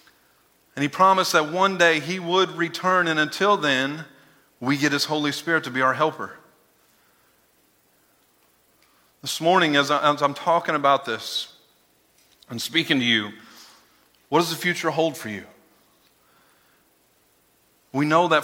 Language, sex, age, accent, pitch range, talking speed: English, male, 40-59, American, 125-150 Hz, 140 wpm